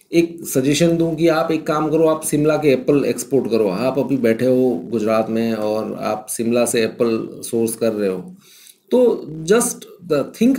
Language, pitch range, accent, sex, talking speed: Hindi, 120-170 Hz, native, male, 185 wpm